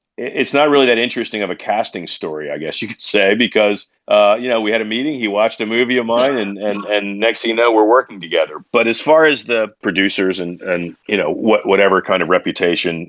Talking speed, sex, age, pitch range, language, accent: 245 wpm, male, 40-59, 85-105 Hz, English, American